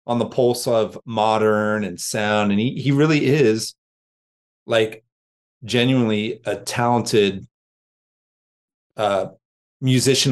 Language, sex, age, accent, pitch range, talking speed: English, male, 30-49, American, 105-125 Hz, 105 wpm